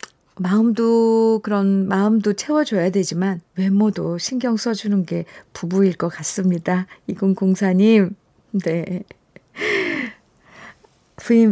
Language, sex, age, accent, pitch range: Korean, female, 50-69, native, 175-240 Hz